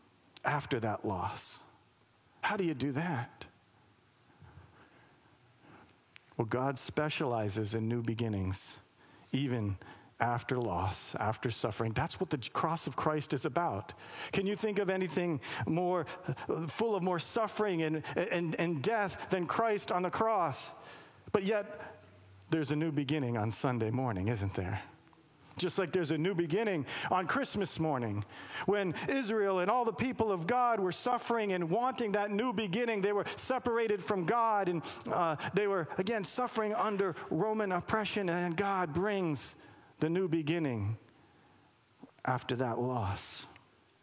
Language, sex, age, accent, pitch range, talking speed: English, male, 50-69, American, 125-200 Hz, 140 wpm